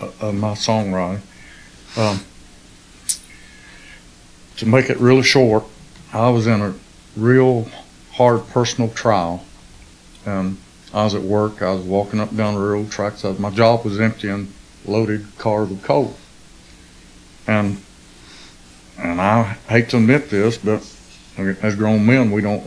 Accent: American